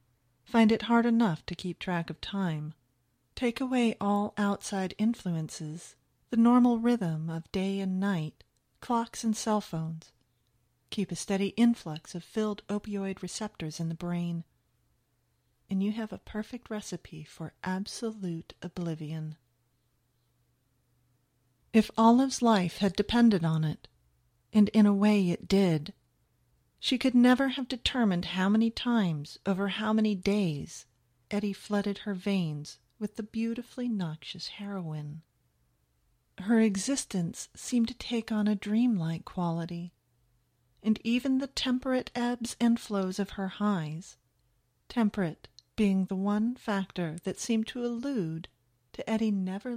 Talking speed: 135 wpm